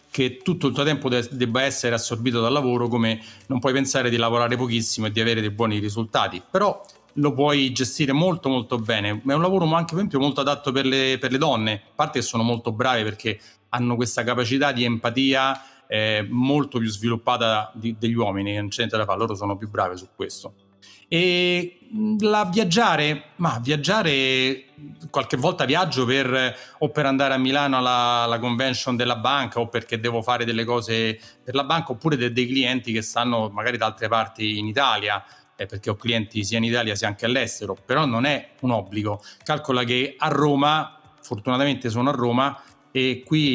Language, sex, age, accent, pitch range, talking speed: Italian, male, 30-49, native, 115-140 Hz, 195 wpm